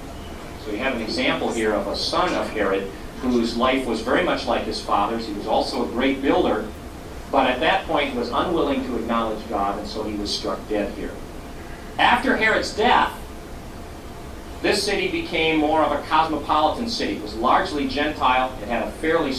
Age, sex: 40-59, male